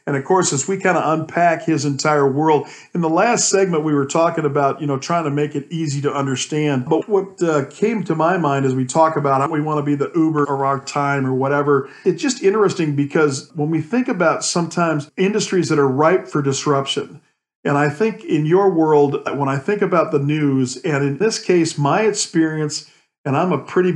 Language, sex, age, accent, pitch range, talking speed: English, male, 50-69, American, 140-170 Hz, 220 wpm